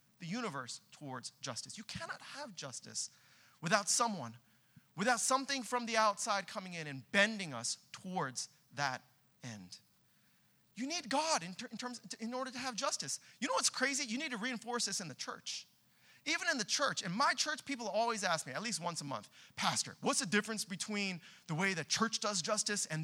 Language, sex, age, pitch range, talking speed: English, male, 30-49, 155-255 Hz, 200 wpm